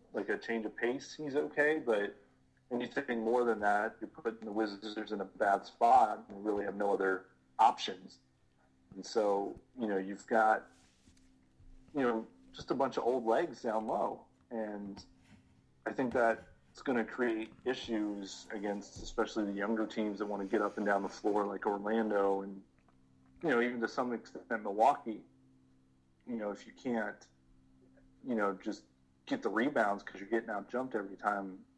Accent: American